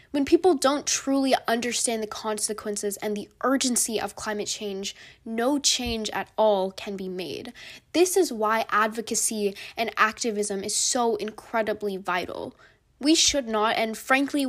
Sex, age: female, 10-29